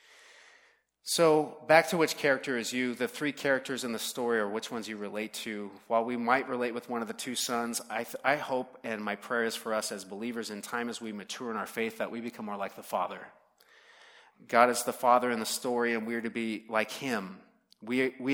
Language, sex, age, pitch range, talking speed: English, male, 30-49, 115-140 Hz, 235 wpm